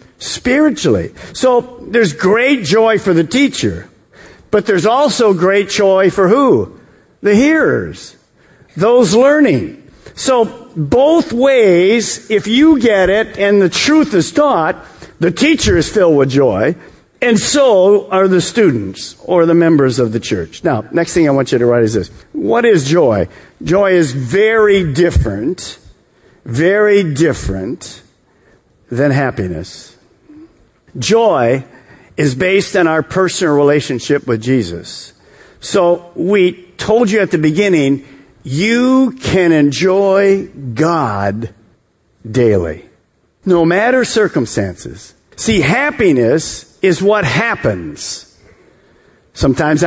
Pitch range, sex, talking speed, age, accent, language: 140-220 Hz, male, 120 wpm, 50-69, American, English